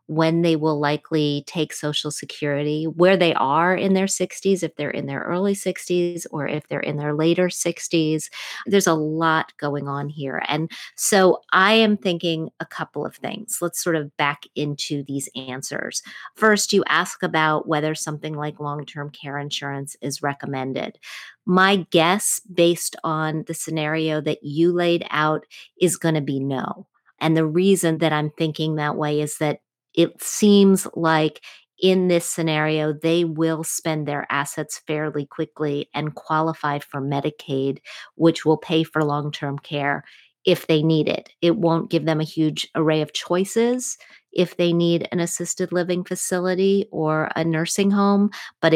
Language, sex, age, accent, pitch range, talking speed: English, female, 40-59, American, 150-175 Hz, 165 wpm